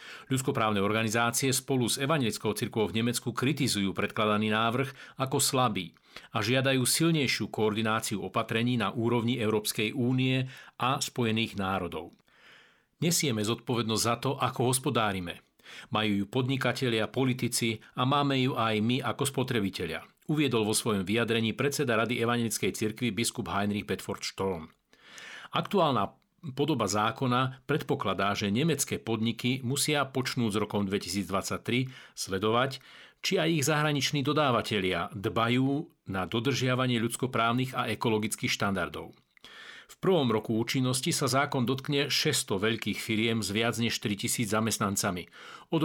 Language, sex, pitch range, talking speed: Slovak, male, 110-135 Hz, 125 wpm